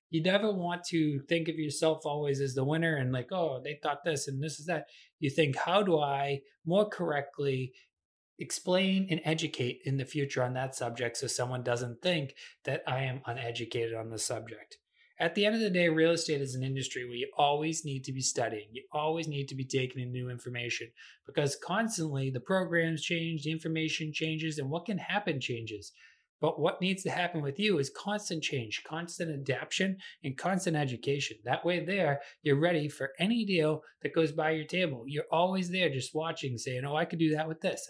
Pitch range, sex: 135-175 Hz, male